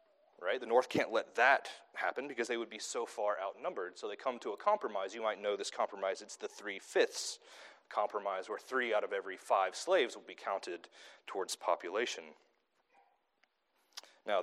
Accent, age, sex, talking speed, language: American, 30-49, male, 175 wpm, English